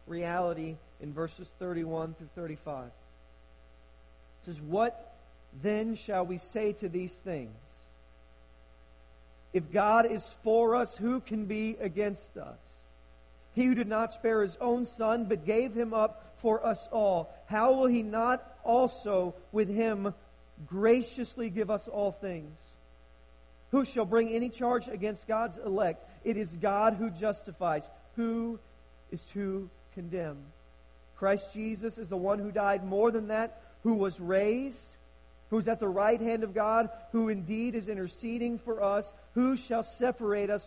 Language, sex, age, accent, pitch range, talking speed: English, male, 40-59, American, 170-230 Hz, 150 wpm